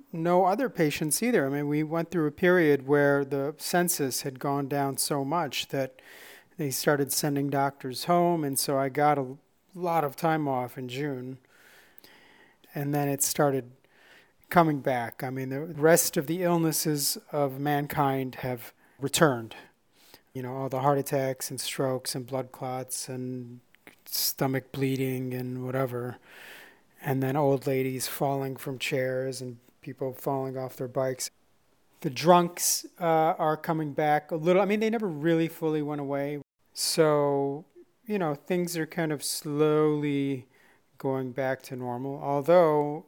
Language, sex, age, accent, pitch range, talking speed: English, male, 30-49, American, 130-160 Hz, 155 wpm